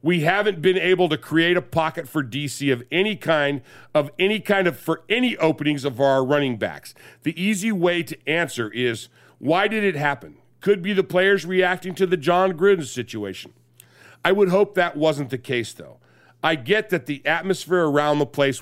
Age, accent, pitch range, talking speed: 50-69, American, 135-180 Hz, 195 wpm